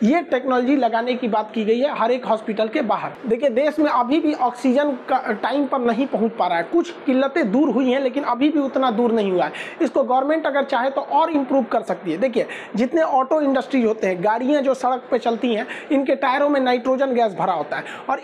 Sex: male